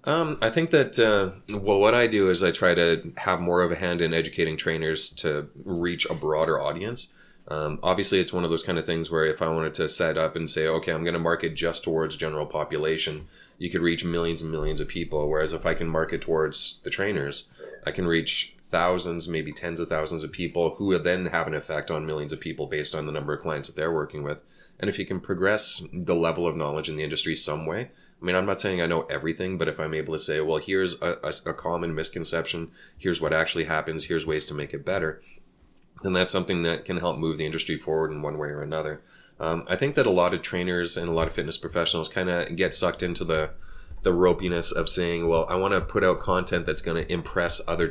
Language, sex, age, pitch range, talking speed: English, male, 20-39, 80-85 Hz, 245 wpm